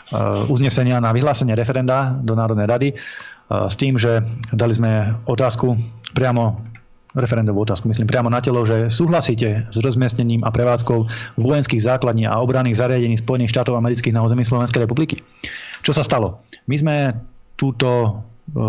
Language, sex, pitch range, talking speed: Slovak, male, 110-130 Hz, 140 wpm